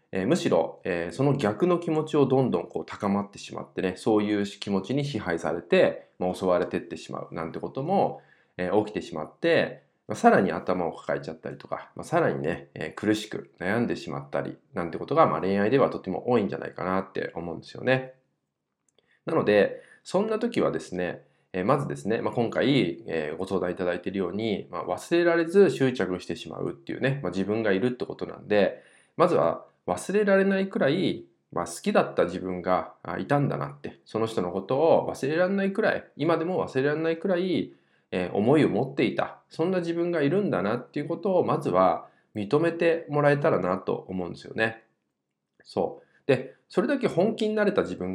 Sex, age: male, 20-39